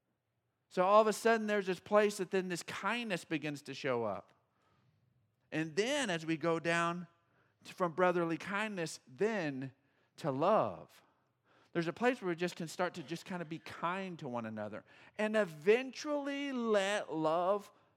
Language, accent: English, American